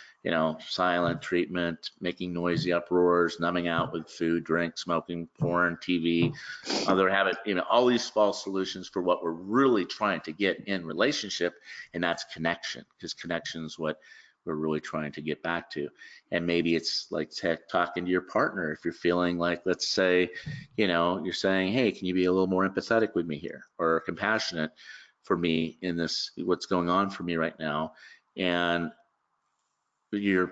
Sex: male